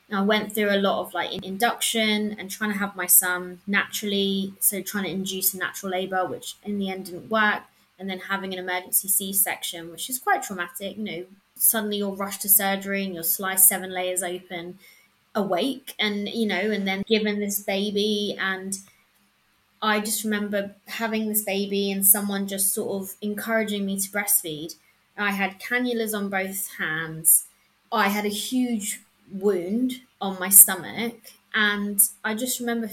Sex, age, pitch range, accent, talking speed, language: female, 20-39, 190-215 Hz, British, 170 wpm, English